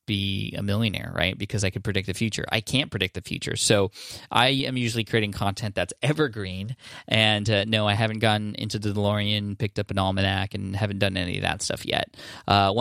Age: 10-29